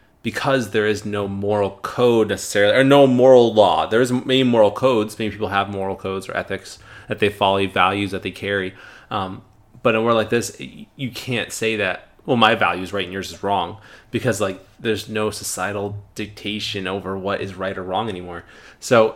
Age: 30-49